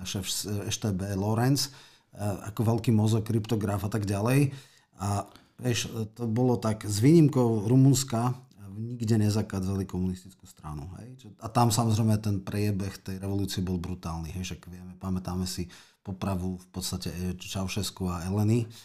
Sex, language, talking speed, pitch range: male, Slovak, 135 wpm, 95-120 Hz